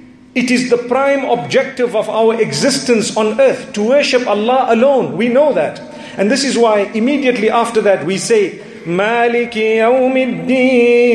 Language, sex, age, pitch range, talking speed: English, male, 40-59, 205-255 Hz, 150 wpm